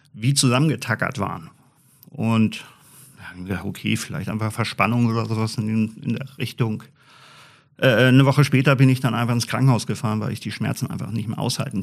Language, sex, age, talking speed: German, male, 50-69, 165 wpm